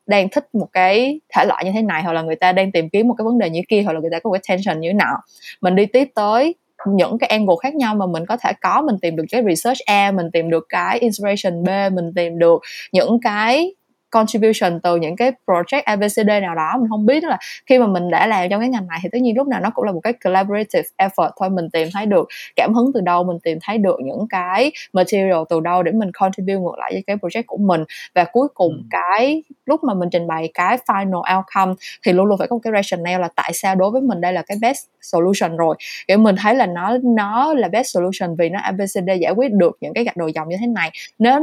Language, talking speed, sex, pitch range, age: Vietnamese, 260 wpm, female, 180-240 Hz, 20-39